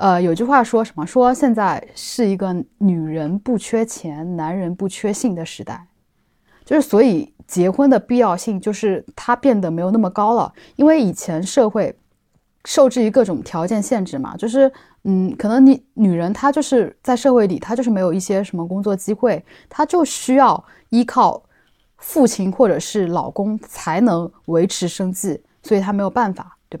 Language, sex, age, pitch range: Chinese, female, 10-29, 175-235 Hz